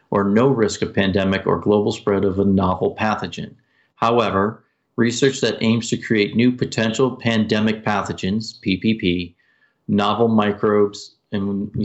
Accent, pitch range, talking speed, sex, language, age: American, 100-120 Hz, 135 wpm, male, English, 40-59